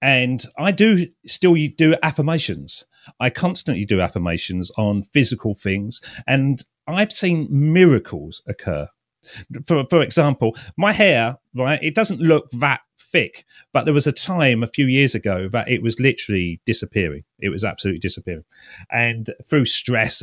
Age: 40-59